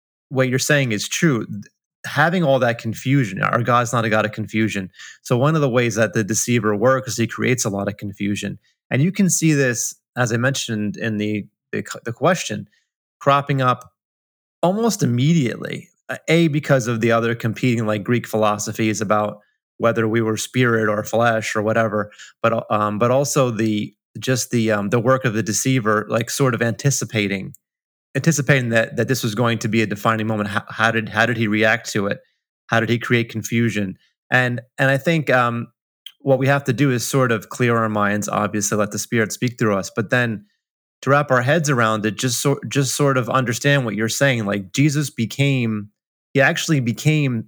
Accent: American